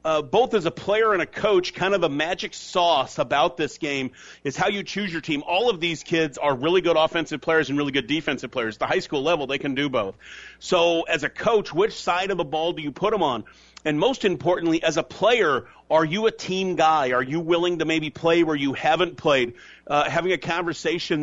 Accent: American